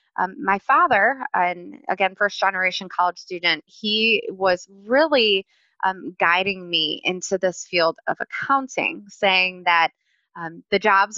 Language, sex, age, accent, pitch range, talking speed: English, female, 20-39, American, 185-235 Hz, 135 wpm